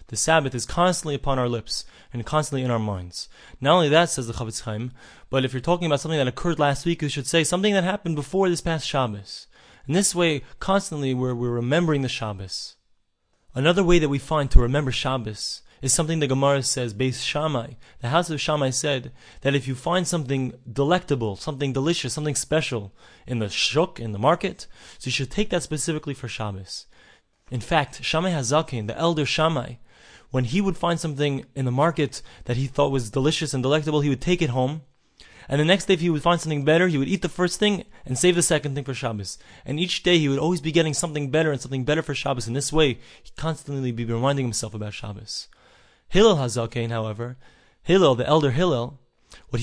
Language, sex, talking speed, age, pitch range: English, male, 210 wpm, 20-39, 125-160 Hz